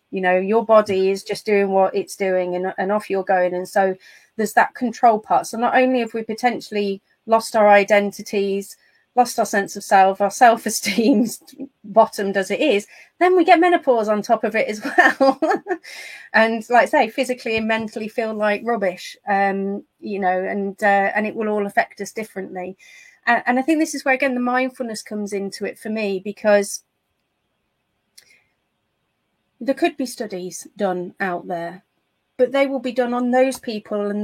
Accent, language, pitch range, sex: British, English, 195-240 Hz, female